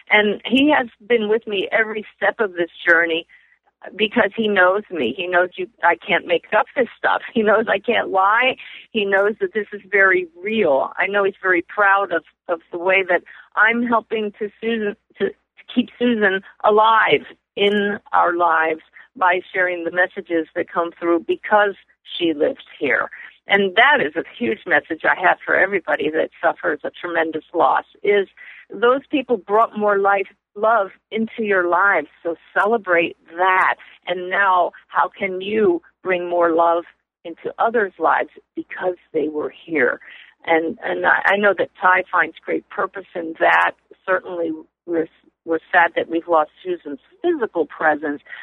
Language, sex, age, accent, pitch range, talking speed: English, female, 50-69, American, 175-220 Hz, 160 wpm